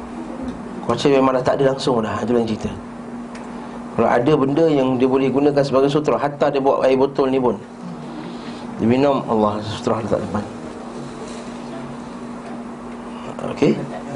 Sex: male